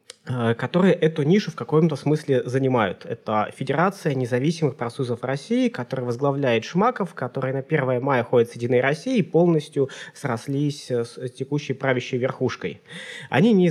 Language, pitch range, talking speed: Russian, 130-165 Hz, 140 wpm